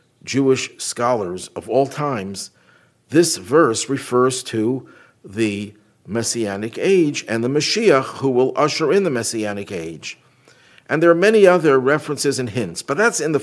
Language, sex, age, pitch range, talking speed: English, male, 50-69, 115-150 Hz, 150 wpm